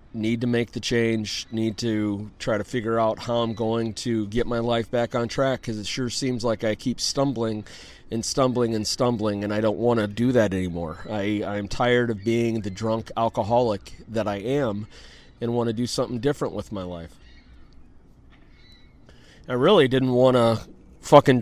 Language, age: English, 30-49